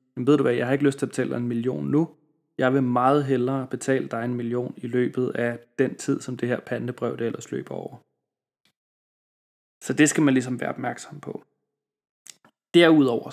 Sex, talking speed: male, 200 wpm